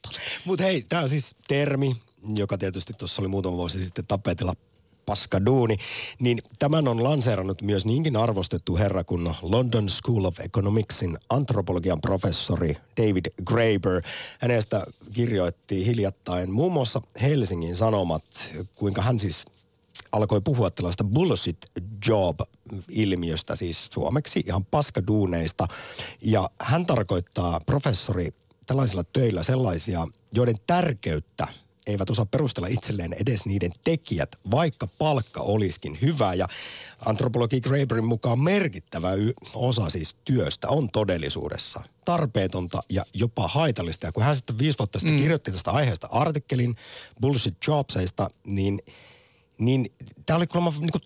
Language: Finnish